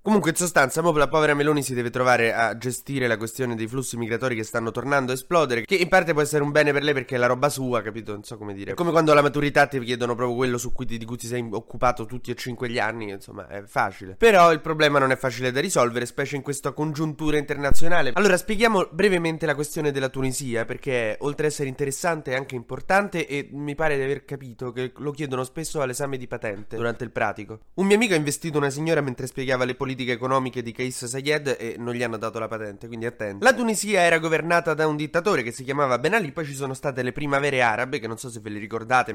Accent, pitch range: native, 120-150 Hz